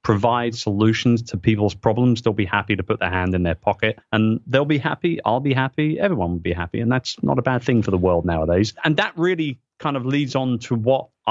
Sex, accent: male, British